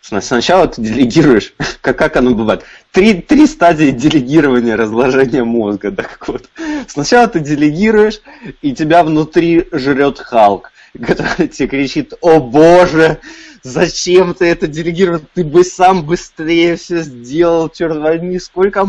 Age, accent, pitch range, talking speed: 20-39, native, 135-185 Hz, 135 wpm